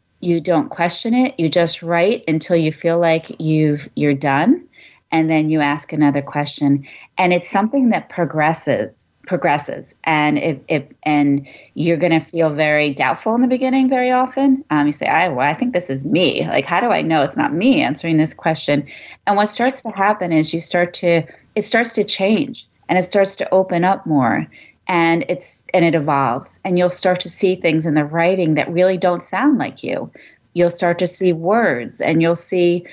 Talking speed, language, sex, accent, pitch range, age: 200 wpm, English, female, American, 155-205 Hz, 30-49